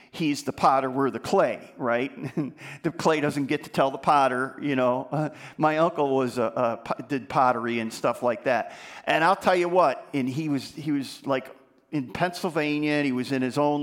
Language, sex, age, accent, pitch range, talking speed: English, male, 50-69, American, 130-160 Hz, 215 wpm